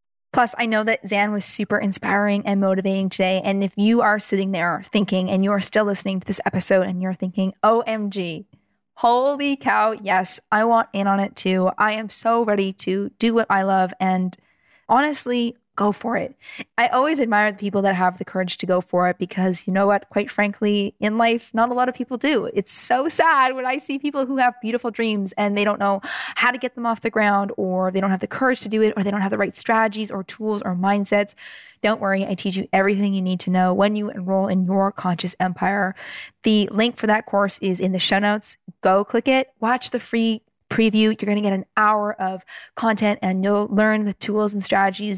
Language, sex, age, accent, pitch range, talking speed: English, female, 20-39, American, 195-225 Hz, 225 wpm